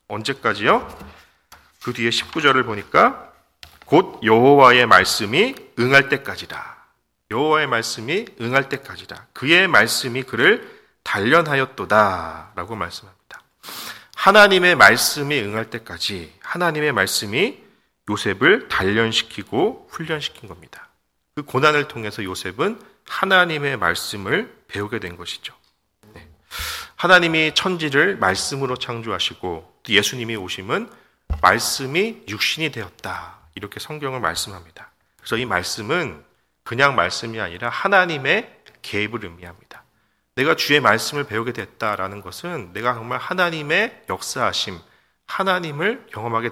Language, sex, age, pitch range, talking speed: English, male, 40-59, 100-145 Hz, 95 wpm